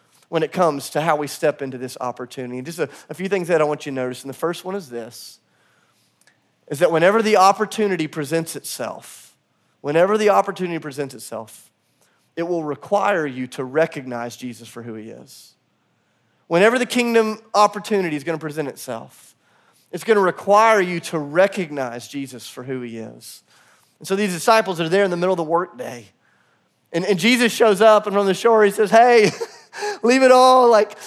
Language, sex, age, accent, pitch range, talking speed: English, male, 30-49, American, 160-220 Hz, 190 wpm